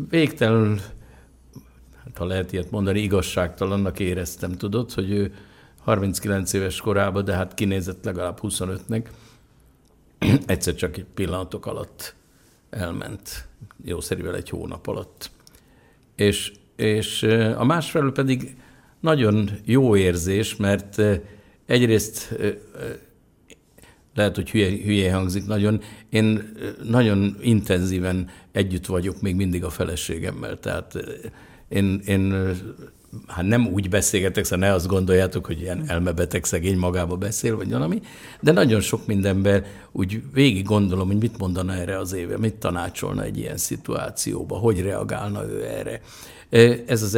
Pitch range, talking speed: 95-110 Hz, 125 wpm